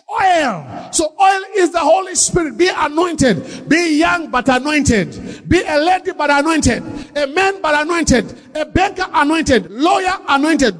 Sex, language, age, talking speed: male, English, 50-69, 150 wpm